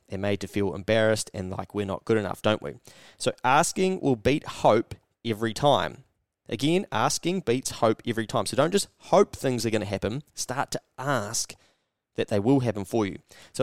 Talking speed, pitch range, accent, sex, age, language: 200 wpm, 110-135 Hz, Australian, male, 20-39, English